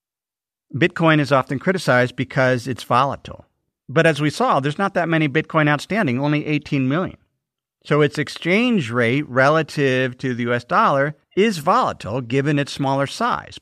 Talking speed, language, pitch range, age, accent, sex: 155 wpm, English, 135-185 Hz, 50-69, American, male